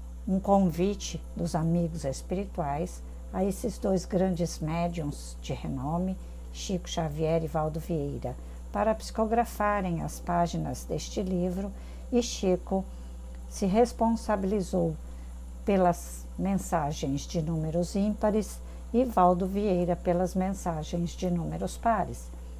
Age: 60-79